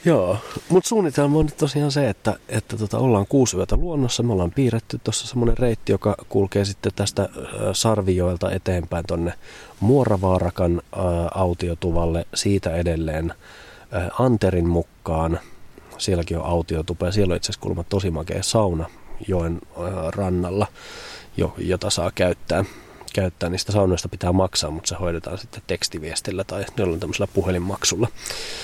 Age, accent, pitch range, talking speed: 30-49, native, 85-105 Hz, 140 wpm